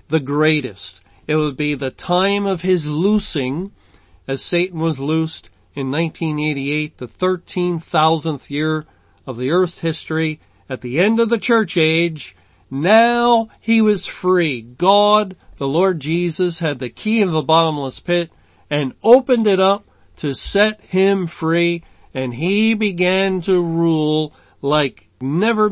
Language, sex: English, male